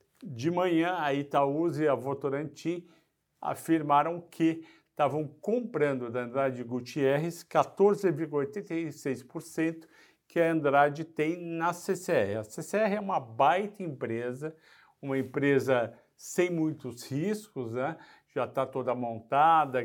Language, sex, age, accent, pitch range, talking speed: Portuguese, male, 60-79, Brazilian, 135-185 Hz, 110 wpm